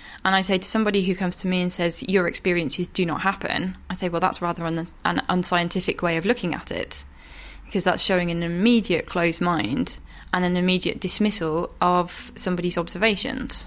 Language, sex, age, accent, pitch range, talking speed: English, female, 20-39, British, 170-200 Hz, 190 wpm